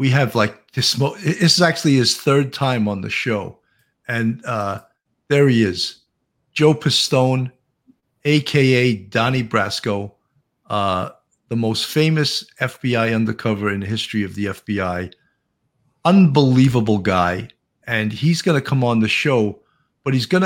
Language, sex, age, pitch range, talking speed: English, male, 50-69, 110-145 Hz, 145 wpm